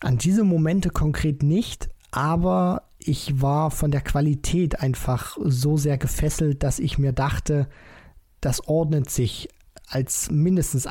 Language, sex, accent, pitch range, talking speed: German, male, German, 135-165 Hz, 130 wpm